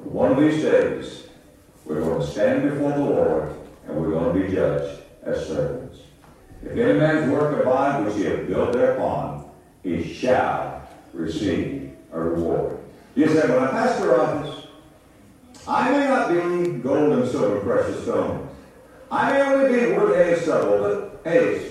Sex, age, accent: male, 60-79, American